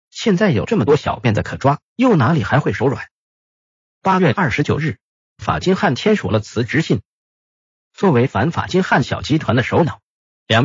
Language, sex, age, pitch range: Chinese, male, 50-69, 135-195 Hz